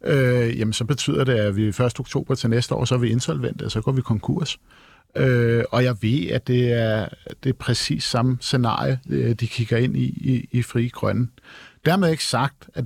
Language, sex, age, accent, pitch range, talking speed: Danish, male, 50-69, native, 125-155 Hz, 215 wpm